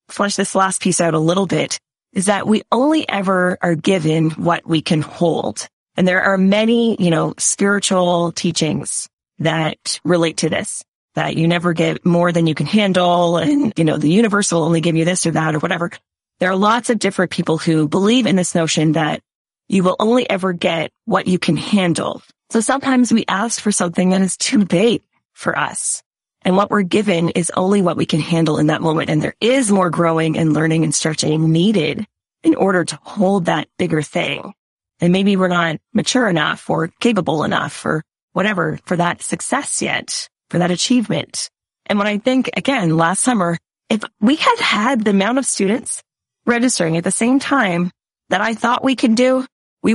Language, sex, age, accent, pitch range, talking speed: English, female, 30-49, American, 165-215 Hz, 195 wpm